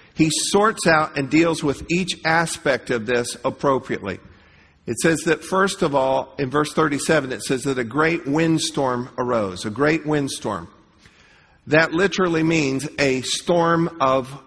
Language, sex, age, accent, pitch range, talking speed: English, male, 50-69, American, 135-165 Hz, 150 wpm